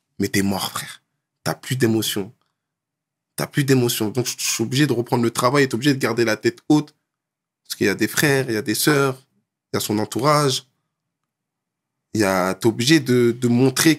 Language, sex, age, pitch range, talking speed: French, male, 20-39, 120-150 Hz, 215 wpm